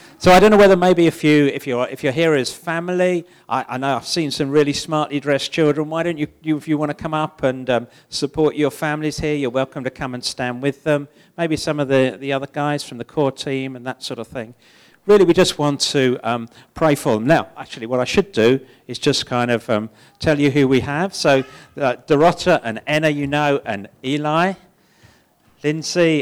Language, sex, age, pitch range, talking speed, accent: English, male, 50-69, 125-155 Hz, 230 wpm, British